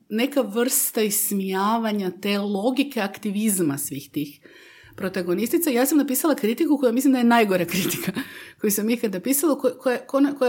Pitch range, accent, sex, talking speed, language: 185-260 Hz, native, female, 150 wpm, Croatian